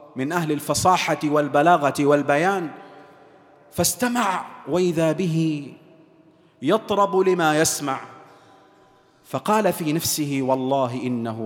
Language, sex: Arabic, male